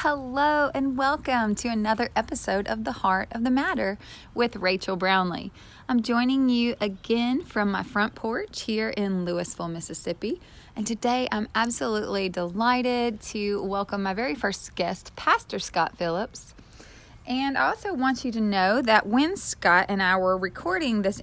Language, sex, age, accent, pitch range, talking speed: English, female, 20-39, American, 190-245 Hz, 160 wpm